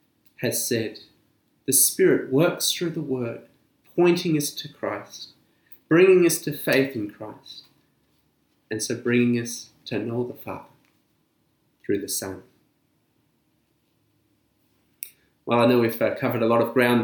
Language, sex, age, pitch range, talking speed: English, male, 30-49, 120-165 Hz, 135 wpm